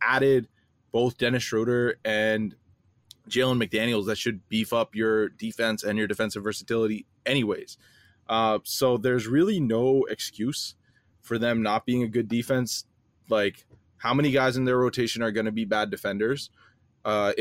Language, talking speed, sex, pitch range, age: English, 155 wpm, male, 105-115 Hz, 20-39